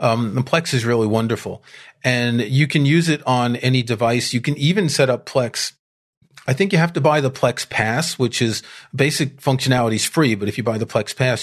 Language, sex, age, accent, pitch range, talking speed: English, male, 40-59, American, 120-160 Hz, 220 wpm